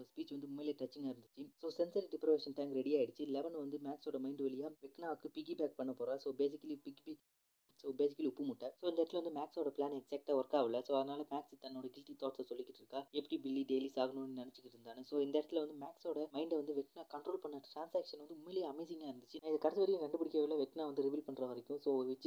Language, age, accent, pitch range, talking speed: Malayalam, 20-39, native, 135-160 Hz, 205 wpm